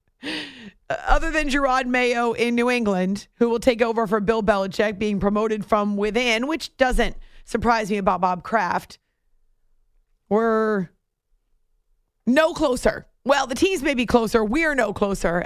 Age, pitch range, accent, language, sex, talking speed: 30-49, 210-265 Hz, American, English, female, 150 wpm